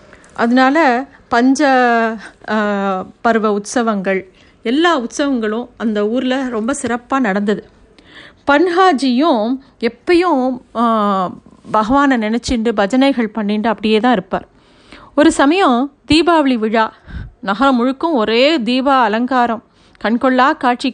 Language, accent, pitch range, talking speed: Tamil, native, 225-285 Hz, 85 wpm